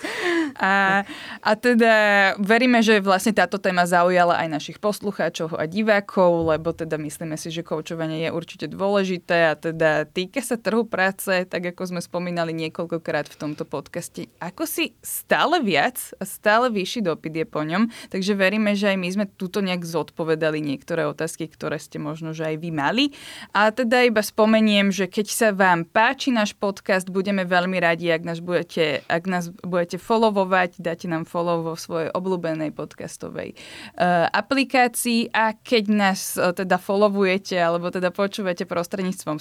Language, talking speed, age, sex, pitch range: Slovak, 160 wpm, 20-39, female, 165-210 Hz